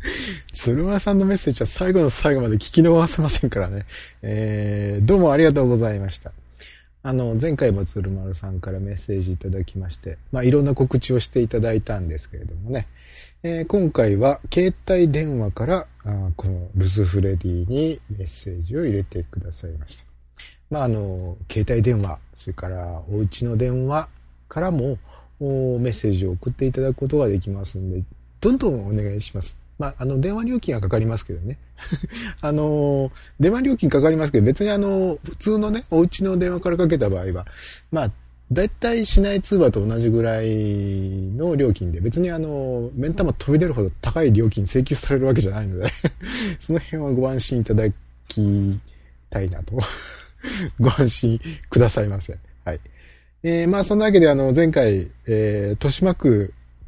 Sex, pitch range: male, 95-150 Hz